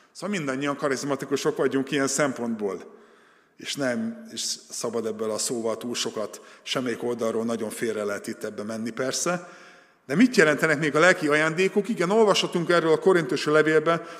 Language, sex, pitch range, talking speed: Hungarian, male, 130-175 Hz, 155 wpm